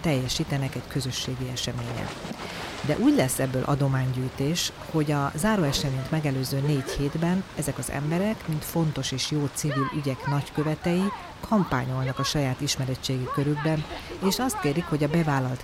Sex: female